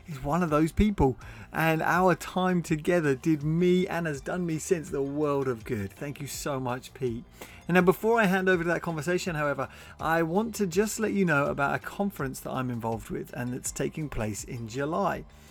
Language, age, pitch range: English, 30-49, 140-185 Hz